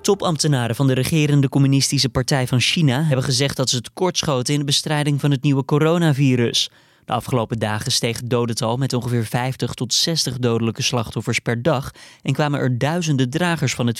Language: Dutch